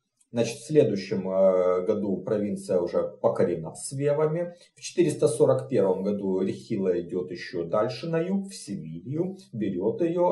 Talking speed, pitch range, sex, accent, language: 120 wpm, 110-165 Hz, male, native, Russian